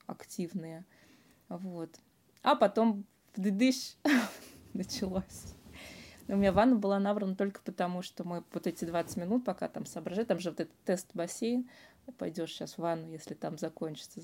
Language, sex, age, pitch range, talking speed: Russian, female, 20-39, 175-215 Hz, 150 wpm